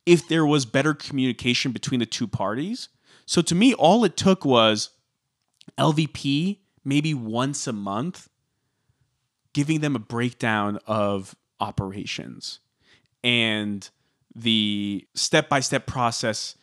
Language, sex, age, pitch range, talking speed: English, male, 30-49, 120-155 Hz, 110 wpm